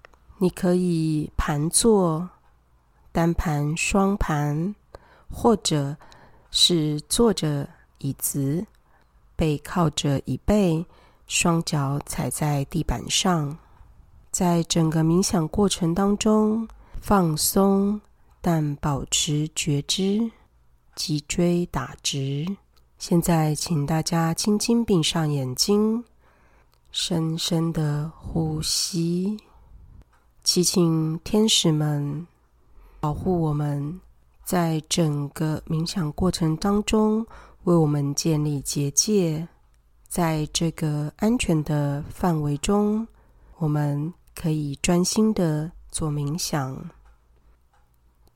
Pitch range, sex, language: 145-180 Hz, female, Chinese